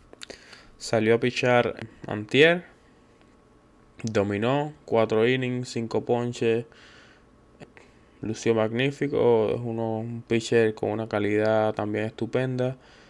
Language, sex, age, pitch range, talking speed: Spanish, male, 20-39, 105-120 Hz, 85 wpm